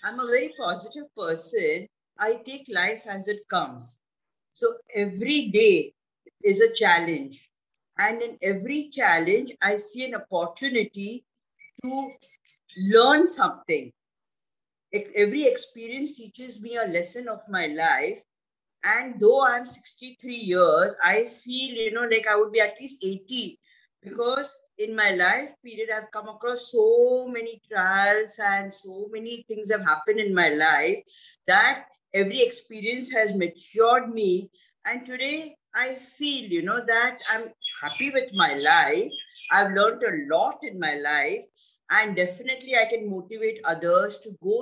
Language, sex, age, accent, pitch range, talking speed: English, female, 50-69, Indian, 200-285 Hz, 145 wpm